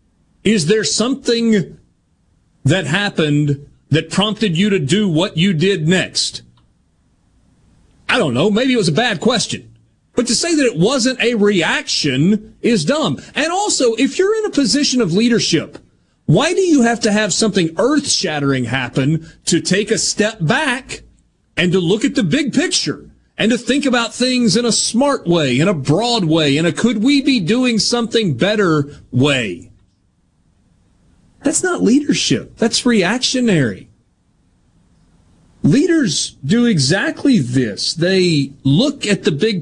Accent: American